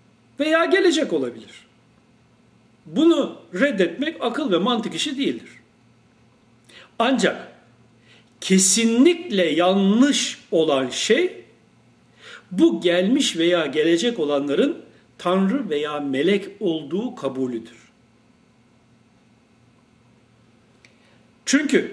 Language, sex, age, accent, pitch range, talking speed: Turkish, male, 60-79, native, 120-200 Hz, 70 wpm